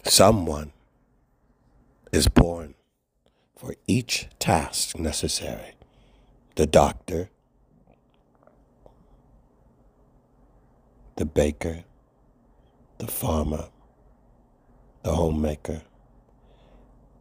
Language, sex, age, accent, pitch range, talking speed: English, male, 60-79, American, 70-85 Hz, 50 wpm